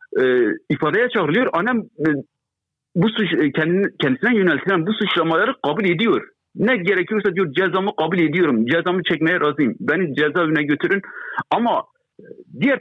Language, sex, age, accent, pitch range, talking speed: Turkish, male, 60-79, native, 165-230 Hz, 120 wpm